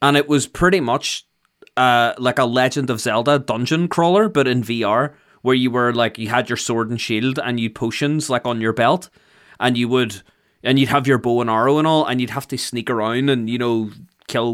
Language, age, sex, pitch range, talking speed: English, 20-39, male, 115-140 Hz, 225 wpm